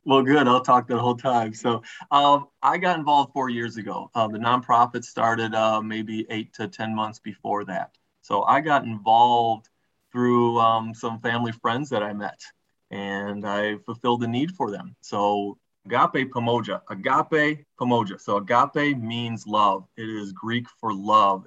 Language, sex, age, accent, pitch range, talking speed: English, male, 30-49, American, 110-130 Hz, 170 wpm